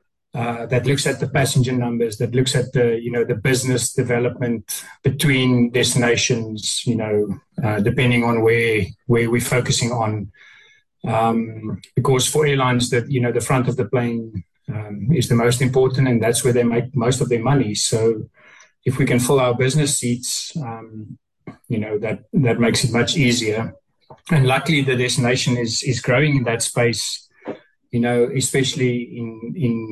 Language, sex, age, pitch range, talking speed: English, male, 30-49, 115-135 Hz, 175 wpm